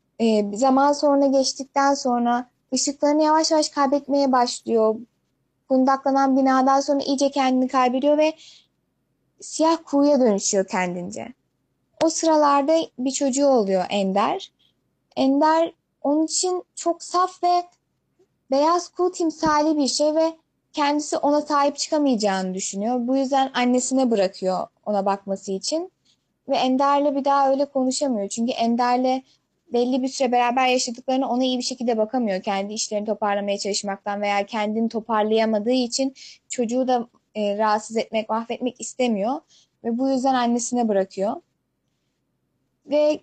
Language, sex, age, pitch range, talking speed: Turkish, female, 10-29, 220-285 Hz, 125 wpm